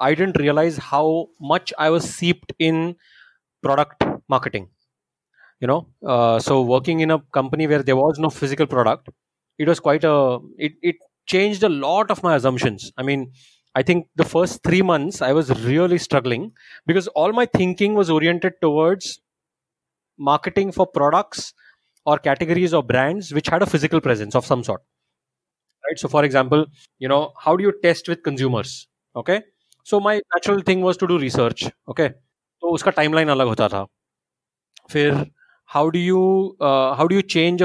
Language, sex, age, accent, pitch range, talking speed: English, male, 20-39, Indian, 135-185 Hz, 170 wpm